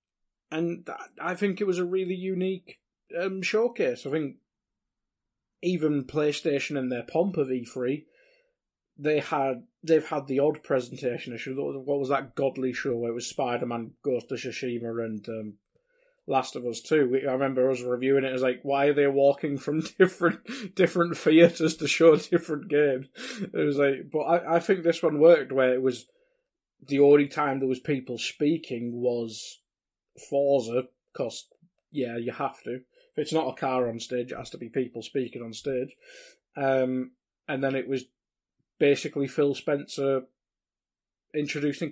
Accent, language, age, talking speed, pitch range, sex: British, English, 20-39, 170 wpm, 130-165 Hz, male